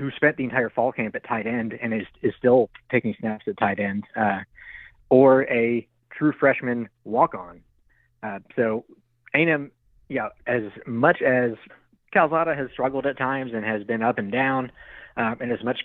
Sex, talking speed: male, 185 wpm